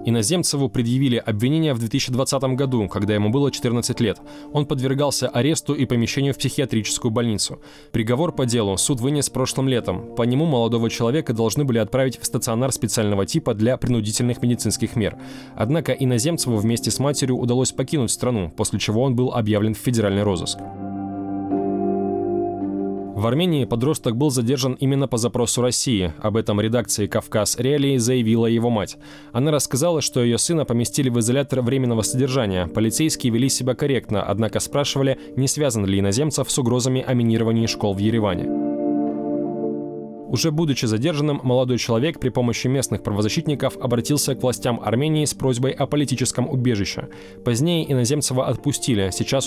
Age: 20-39